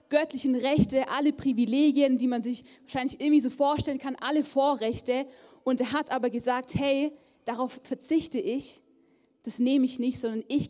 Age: 20-39